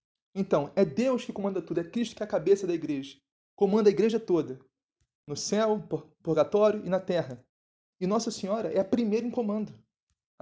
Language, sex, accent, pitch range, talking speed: Portuguese, male, Brazilian, 170-220 Hz, 195 wpm